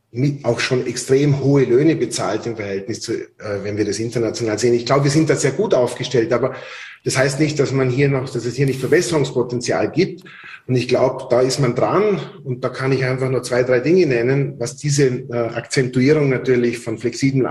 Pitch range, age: 120-140 Hz, 30-49